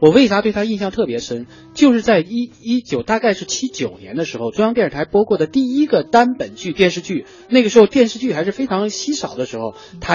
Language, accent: Chinese, native